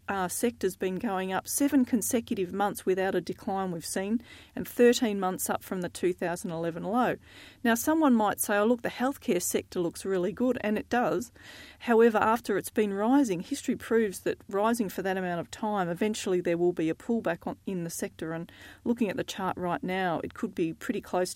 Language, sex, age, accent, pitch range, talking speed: English, female, 40-59, Australian, 180-230 Hz, 215 wpm